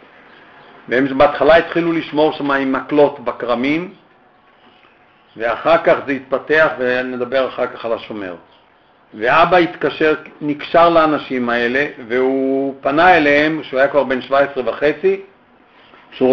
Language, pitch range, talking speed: Hebrew, 130-155 Hz, 110 wpm